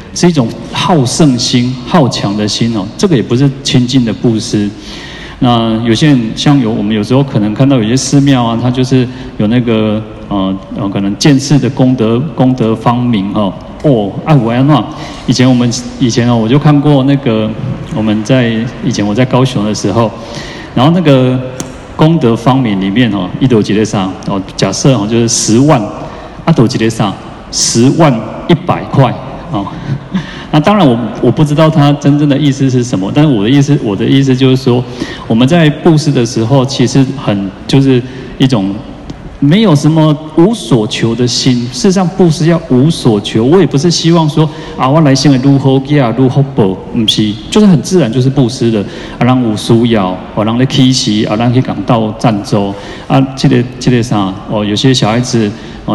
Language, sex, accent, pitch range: Chinese, male, native, 110-140 Hz